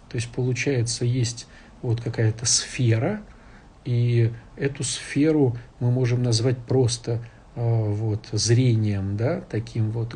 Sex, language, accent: male, Russian, native